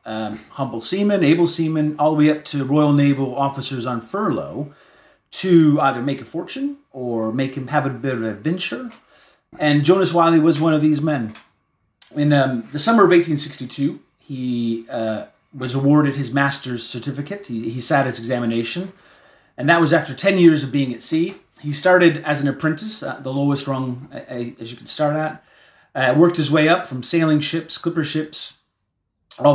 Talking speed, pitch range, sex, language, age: 185 wpm, 125-165 Hz, male, English, 30-49